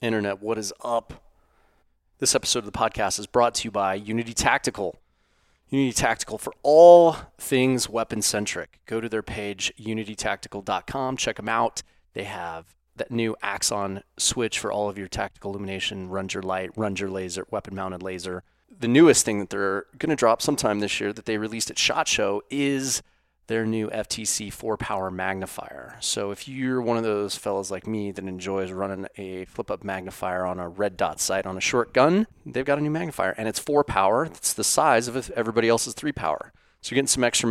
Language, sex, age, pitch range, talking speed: English, male, 30-49, 95-115 Hz, 195 wpm